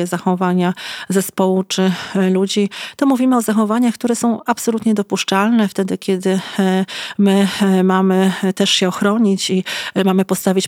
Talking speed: 125 wpm